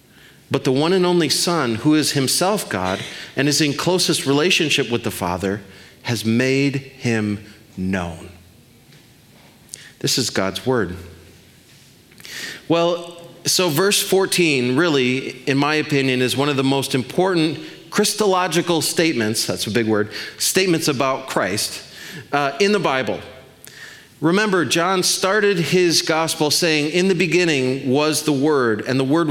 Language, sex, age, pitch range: English, male, 30-49, 130-185 Hz